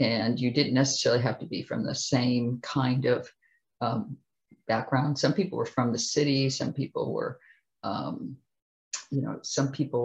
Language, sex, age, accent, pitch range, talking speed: English, female, 50-69, American, 125-145 Hz, 165 wpm